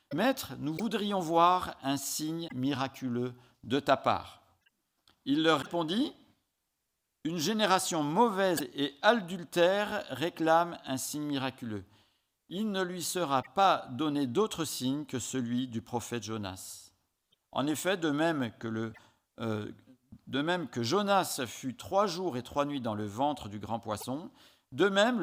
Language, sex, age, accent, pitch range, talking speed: French, male, 50-69, French, 115-170 Hz, 150 wpm